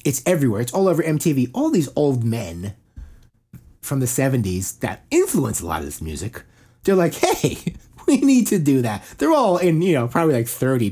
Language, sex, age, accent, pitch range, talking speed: English, male, 30-49, American, 100-165 Hz, 200 wpm